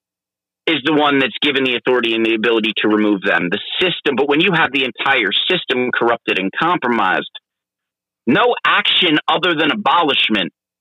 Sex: male